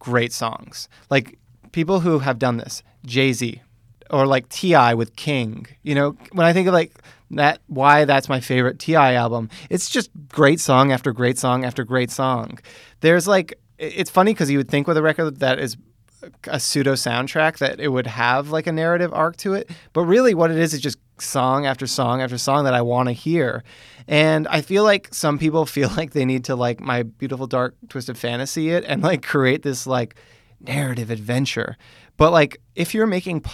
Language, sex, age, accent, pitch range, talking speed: English, male, 30-49, American, 120-150 Hz, 200 wpm